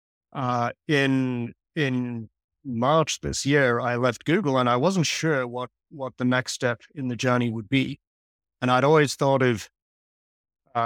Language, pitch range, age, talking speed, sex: English, 115-140 Hz, 40-59, 160 wpm, male